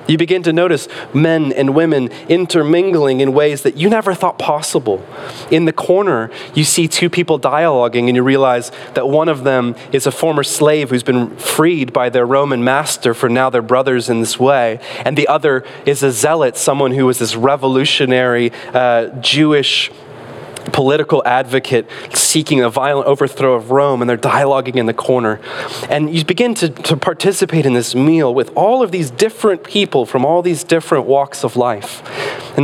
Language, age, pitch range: English, 20-39, 125-155 Hz